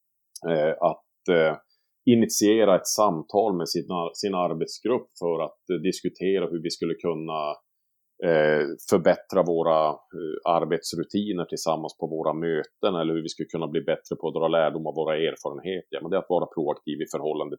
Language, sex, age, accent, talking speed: Swedish, male, 40-59, Norwegian, 170 wpm